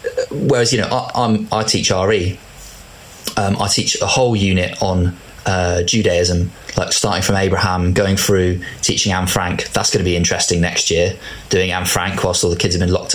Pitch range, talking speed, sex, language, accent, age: 90-105 Hz, 195 wpm, male, English, British, 20-39